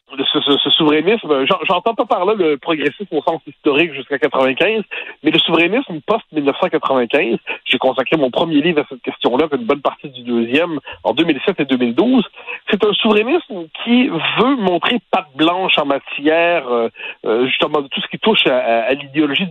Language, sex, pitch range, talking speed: French, male, 150-215 Hz, 170 wpm